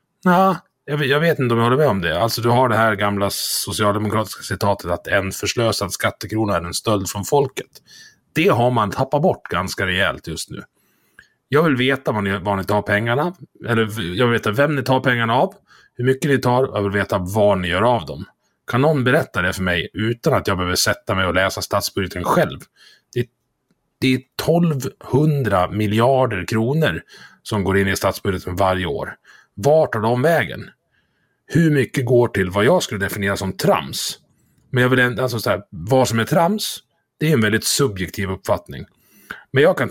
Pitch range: 100-135 Hz